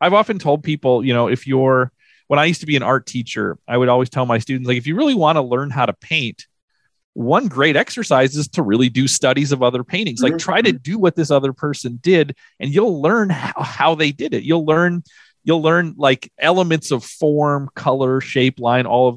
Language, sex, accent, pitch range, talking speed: English, male, American, 120-150 Hz, 230 wpm